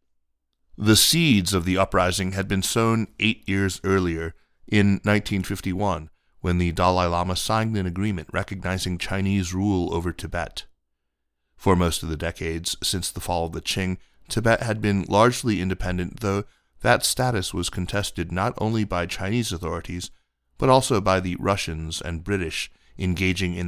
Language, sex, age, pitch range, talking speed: English, male, 30-49, 85-100 Hz, 150 wpm